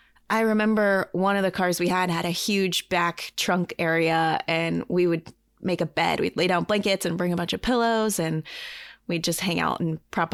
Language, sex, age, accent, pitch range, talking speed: English, female, 20-39, American, 170-205 Hz, 215 wpm